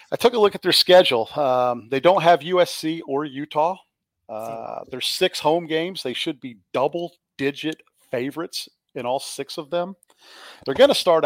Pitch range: 120-155 Hz